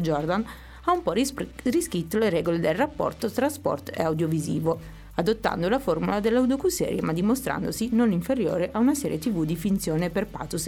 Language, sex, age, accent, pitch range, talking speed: Italian, female, 30-49, native, 170-235 Hz, 165 wpm